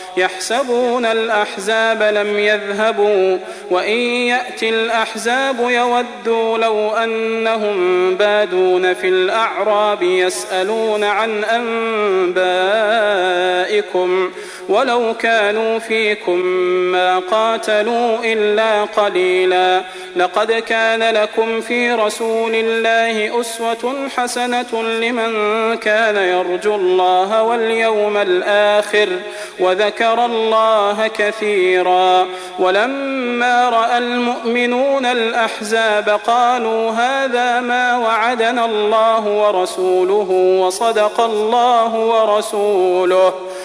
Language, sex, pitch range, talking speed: Arabic, male, 190-230 Hz, 75 wpm